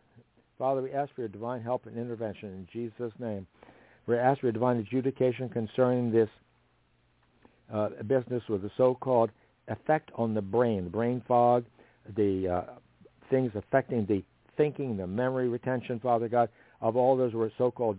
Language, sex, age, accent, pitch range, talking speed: English, male, 60-79, American, 105-135 Hz, 160 wpm